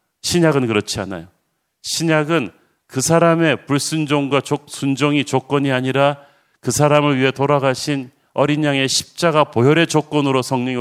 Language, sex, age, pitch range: Korean, male, 40-59, 125-150 Hz